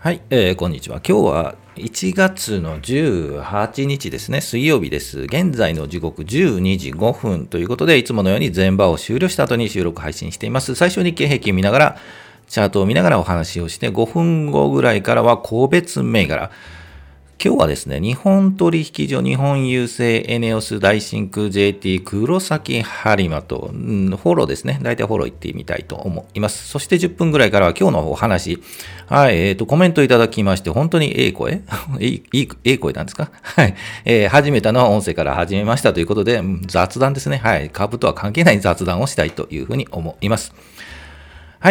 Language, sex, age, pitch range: Japanese, male, 40-59, 90-140 Hz